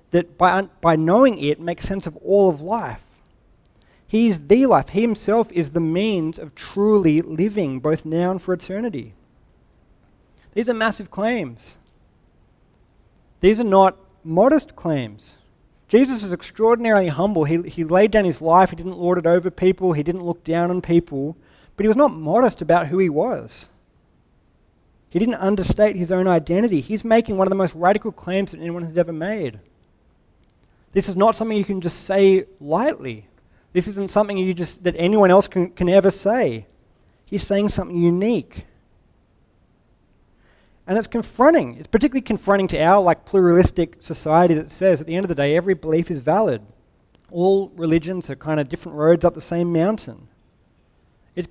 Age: 30-49